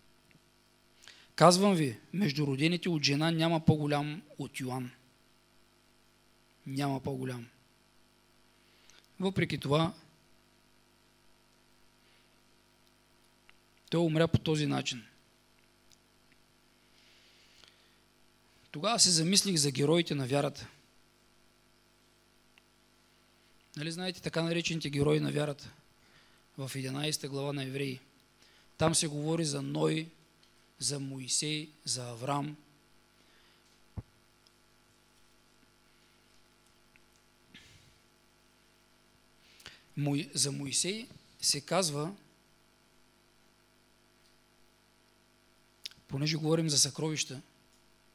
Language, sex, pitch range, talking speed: English, male, 120-150 Hz, 70 wpm